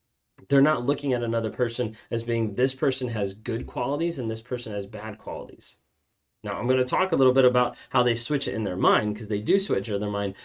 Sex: male